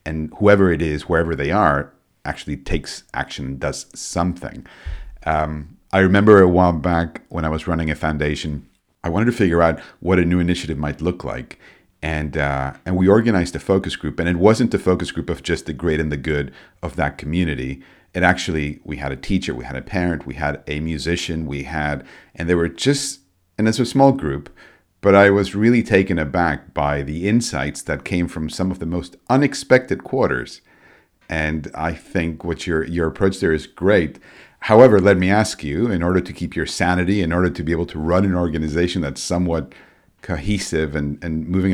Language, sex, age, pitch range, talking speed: English, male, 50-69, 75-90 Hz, 200 wpm